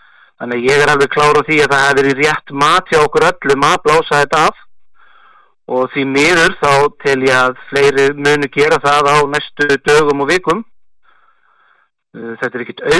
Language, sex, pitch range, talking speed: English, male, 135-150 Hz, 165 wpm